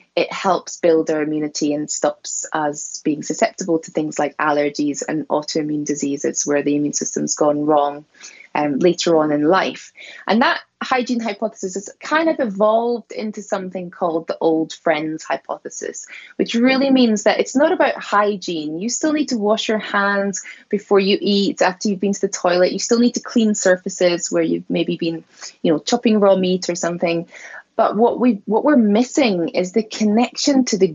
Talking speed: 185 wpm